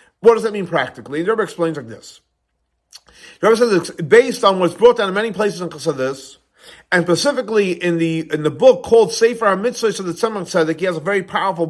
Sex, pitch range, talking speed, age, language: male, 170-240 Hz, 225 wpm, 50-69, English